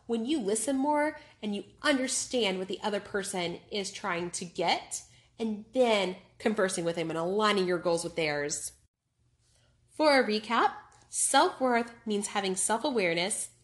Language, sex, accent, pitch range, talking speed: English, female, American, 190-240 Hz, 145 wpm